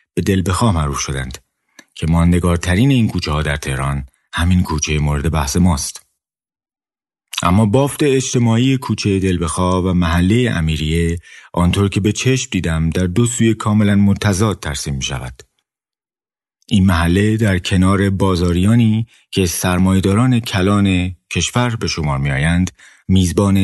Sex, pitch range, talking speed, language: male, 80-95 Hz, 125 wpm, Persian